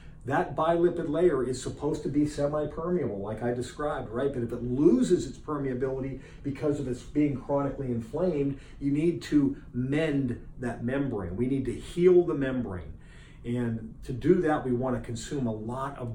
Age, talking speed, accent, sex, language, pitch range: 40-59, 170 wpm, American, male, English, 120-145 Hz